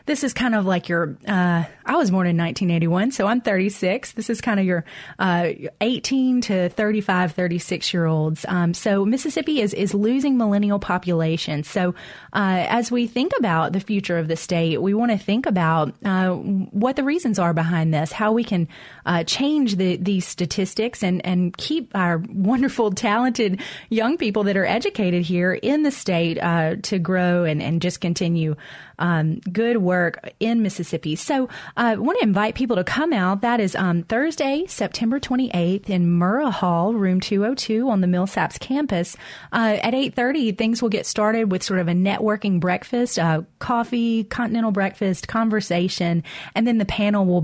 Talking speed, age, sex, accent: 175 wpm, 30-49, female, American